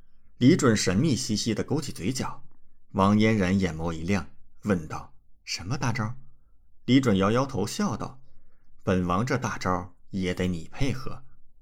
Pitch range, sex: 90-125 Hz, male